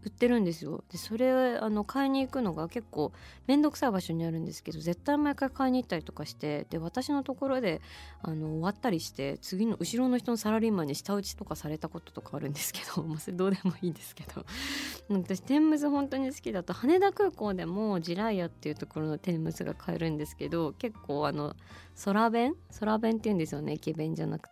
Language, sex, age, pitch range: Japanese, female, 20-39, 160-240 Hz